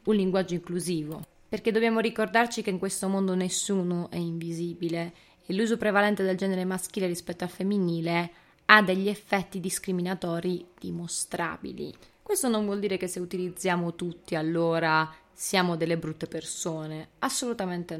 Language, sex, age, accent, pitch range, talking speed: Italian, female, 20-39, native, 175-215 Hz, 135 wpm